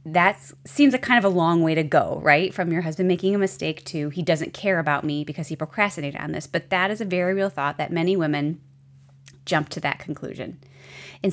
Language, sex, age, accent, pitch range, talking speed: English, female, 30-49, American, 140-185 Hz, 230 wpm